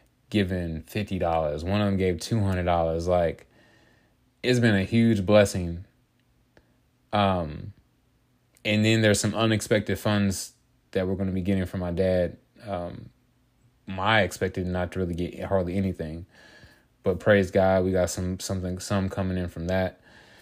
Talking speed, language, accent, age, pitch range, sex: 155 wpm, English, American, 20-39, 90-110 Hz, male